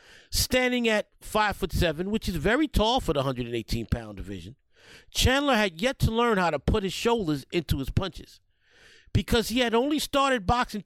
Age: 50-69